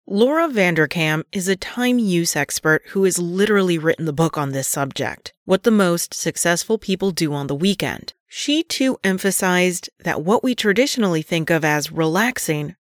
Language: English